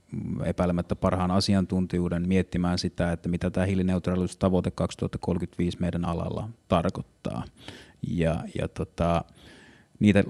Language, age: Finnish, 30-49